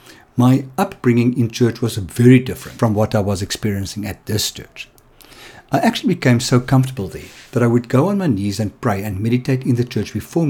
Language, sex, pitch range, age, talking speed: English, male, 110-140 Hz, 60-79, 205 wpm